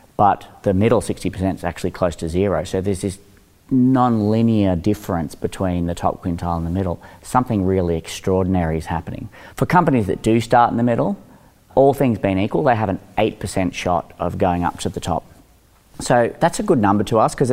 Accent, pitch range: Australian, 90-105 Hz